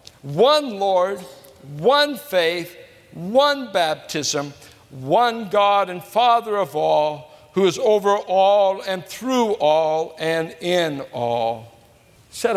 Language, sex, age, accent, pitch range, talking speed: English, male, 60-79, American, 150-220 Hz, 110 wpm